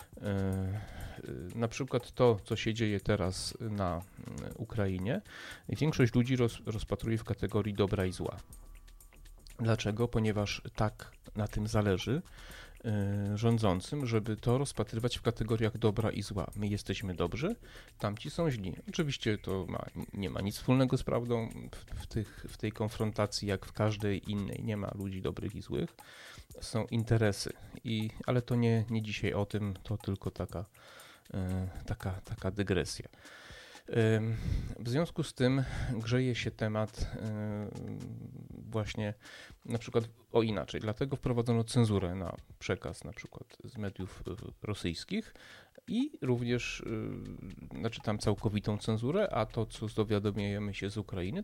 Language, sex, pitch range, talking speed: Polish, male, 100-120 Hz, 135 wpm